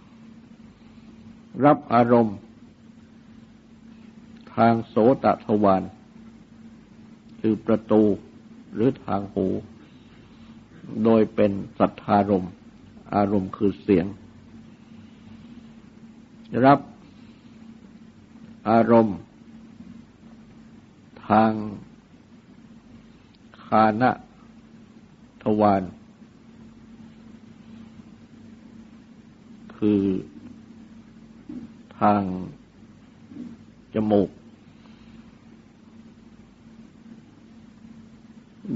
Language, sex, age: Thai, male, 60-79